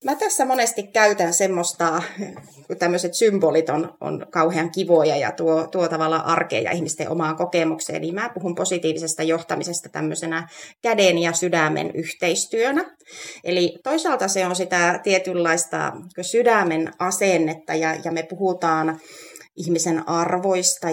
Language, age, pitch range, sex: Finnish, 30-49, 165-185 Hz, female